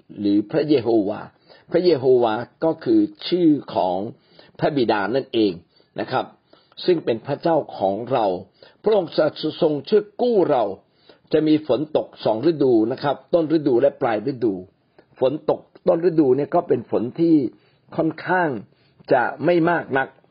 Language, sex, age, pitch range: Thai, male, 60-79, 125-190 Hz